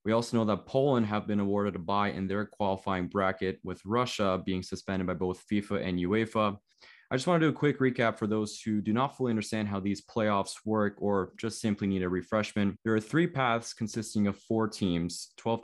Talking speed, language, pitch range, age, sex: 220 wpm, English, 95-115 Hz, 20-39, male